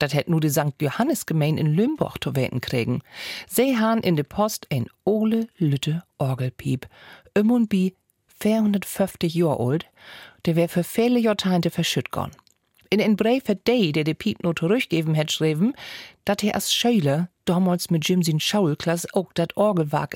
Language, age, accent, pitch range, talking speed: German, 40-59, German, 145-200 Hz, 165 wpm